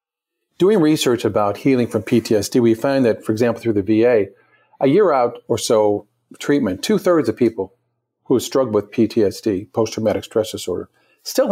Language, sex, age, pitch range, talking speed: English, male, 50-69, 110-140 Hz, 160 wpm